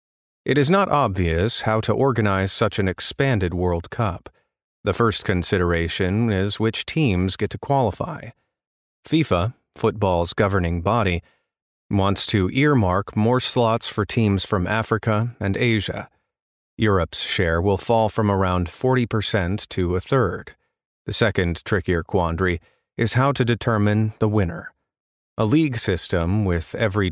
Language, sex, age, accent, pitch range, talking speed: English, male, 30-49, American, 90-115 Hz, 135 wpm